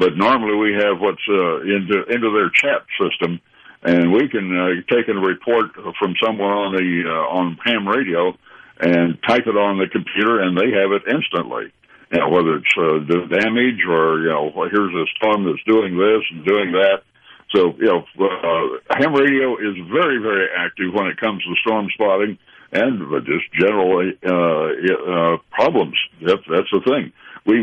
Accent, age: American, 60-79